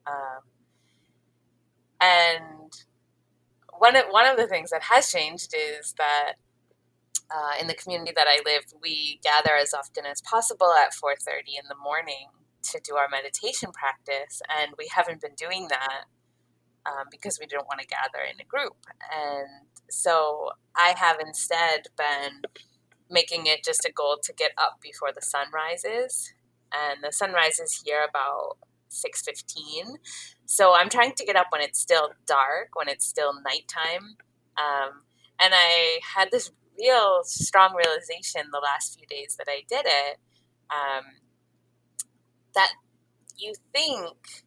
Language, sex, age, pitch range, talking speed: English, female, 20-39, 140-180 Hz, 150 wpm